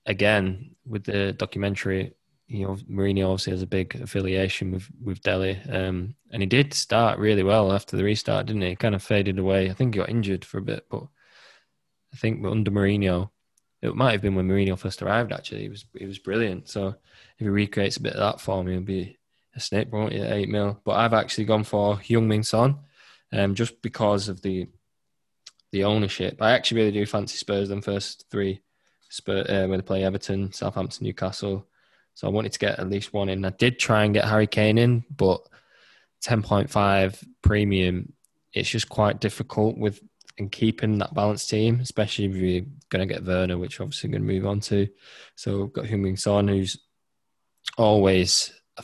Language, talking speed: English, 200 wpm